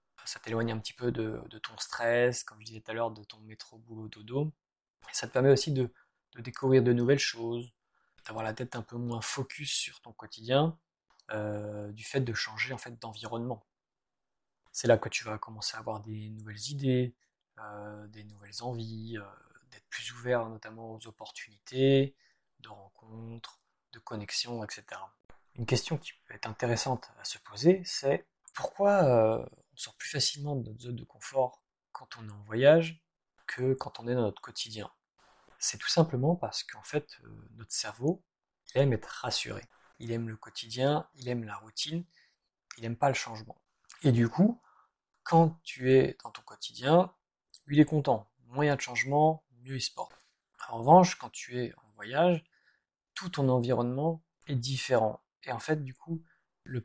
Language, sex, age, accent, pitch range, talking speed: French, male, 20-39, French, 110-140 Hz, 175 wpm